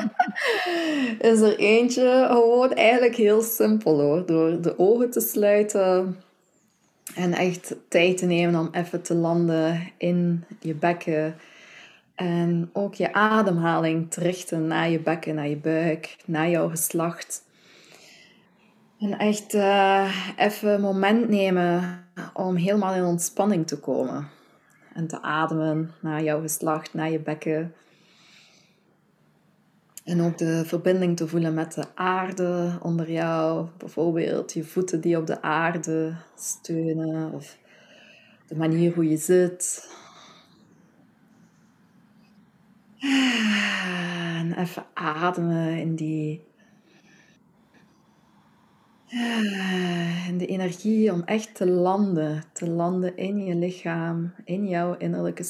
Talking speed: 115 wpm